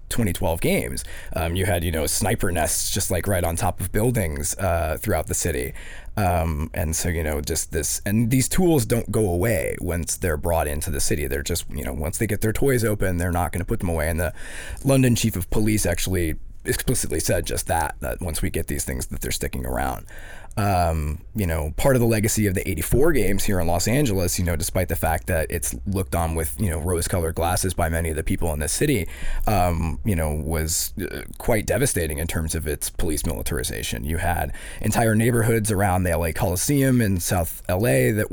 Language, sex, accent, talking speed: English, male, American, 220 wpm